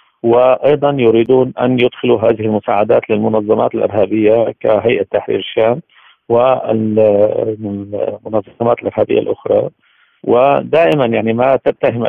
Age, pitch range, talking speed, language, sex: 50-69, 110-120 Hz, 90 wpm, Arabic, male